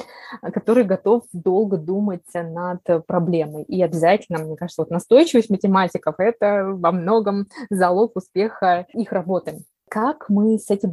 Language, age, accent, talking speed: Russian, 20-39, native, 125 wpm